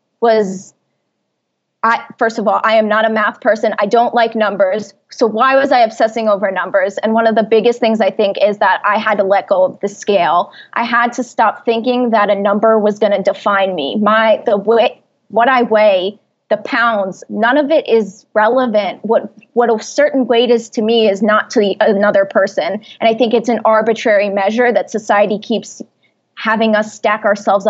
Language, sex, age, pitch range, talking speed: English, female, 20-39, 210-240 Hz, 200 wpm